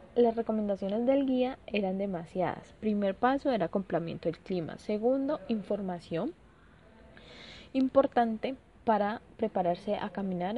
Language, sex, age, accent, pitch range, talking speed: Spanish, female, 20-39, Colombian, 185-235 Hz, 110 wpm